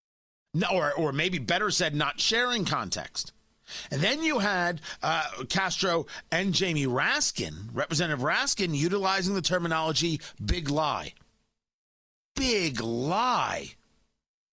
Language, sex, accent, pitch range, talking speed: English, male, American, 140-200 Hz, 110 wpm